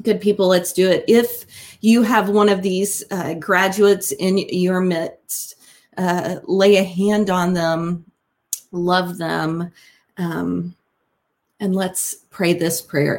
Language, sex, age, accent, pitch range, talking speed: English, female, 30-49, American, 170-210 Hz, 135 wpm